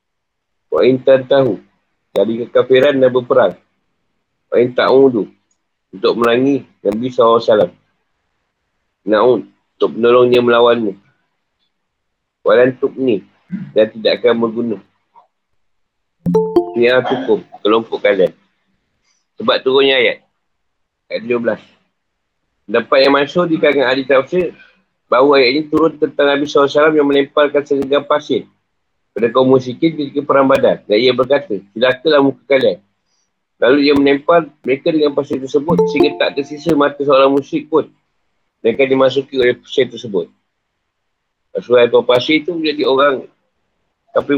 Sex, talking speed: male, 120 wpm